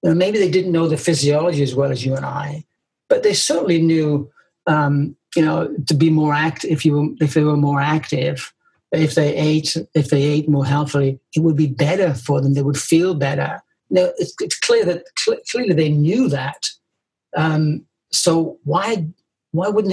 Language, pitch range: English, 145-175 Hz